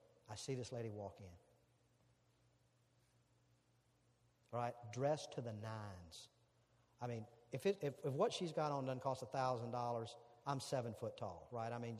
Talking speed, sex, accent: 165 wpm, male, American